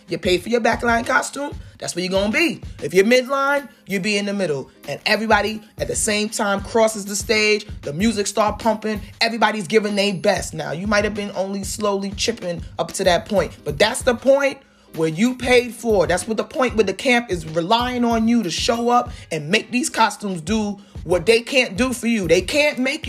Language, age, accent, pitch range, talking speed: English, 30-49, American, 180-235 Hz, 225 wpm